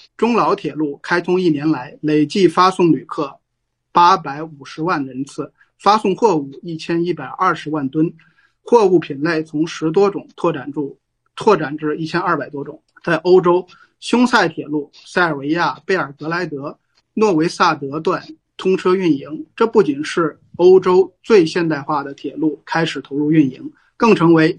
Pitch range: 150-185 Hz